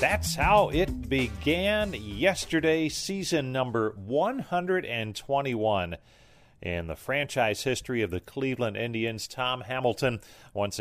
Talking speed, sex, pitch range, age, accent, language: 105 wpm, male, 95-130 Hz, 40-59, American, English